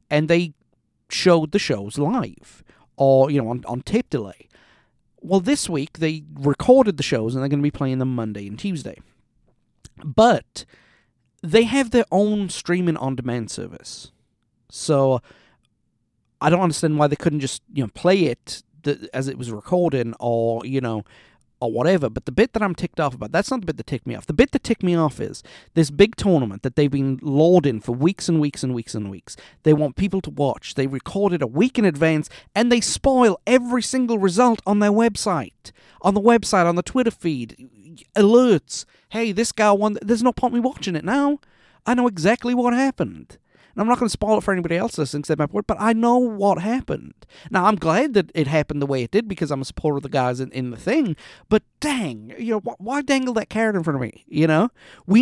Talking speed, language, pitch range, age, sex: 210 wpm, English, 140-215 Hz, 40-59, male